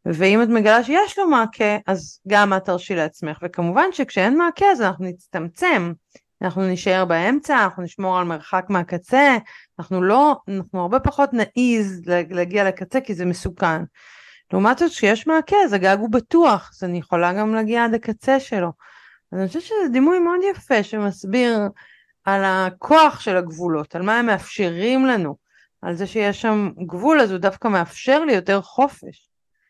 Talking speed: 160 wpm